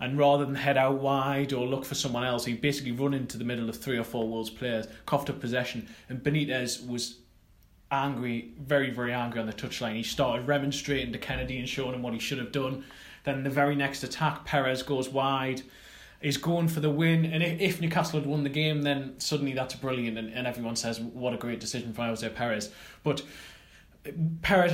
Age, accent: 20-39, British